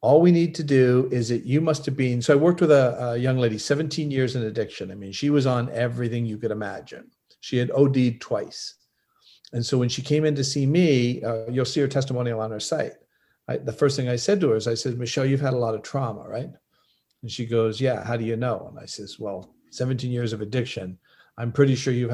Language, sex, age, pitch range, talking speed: English, male, 50-69, 115-150 Hz, 245 wpm